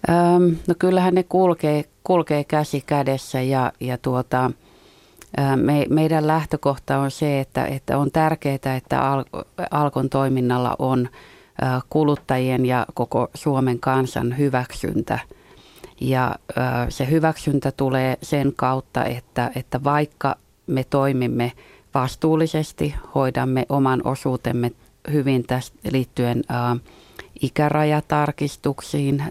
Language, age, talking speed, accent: Finnish, 30-49, 100 wpm, native